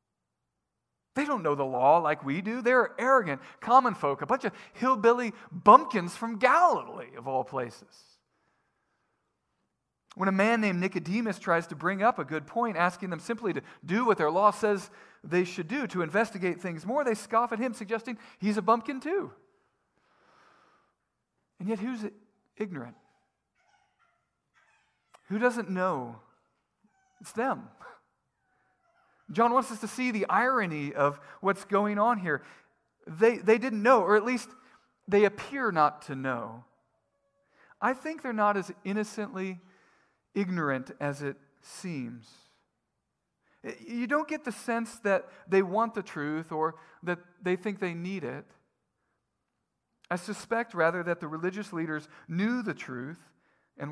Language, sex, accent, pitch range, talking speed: English, male, American, 170-235 Hz, 145 wpm